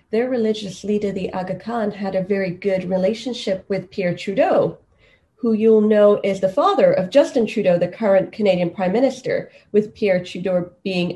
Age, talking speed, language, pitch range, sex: 30-49, 170 wpm, English, 195-230 Hz, female